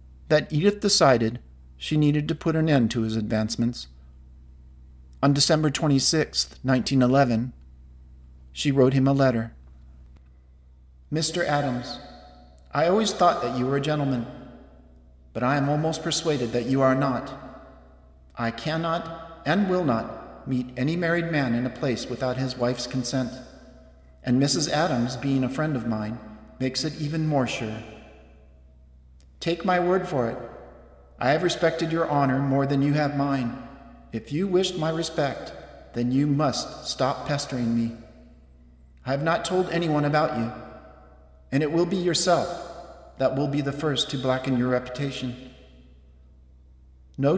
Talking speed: 150 wpm